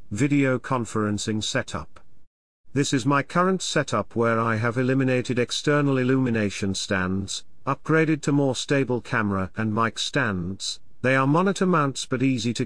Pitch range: 105-140 Hz